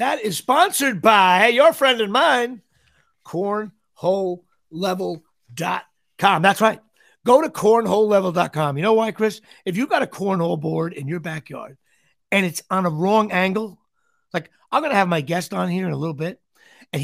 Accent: American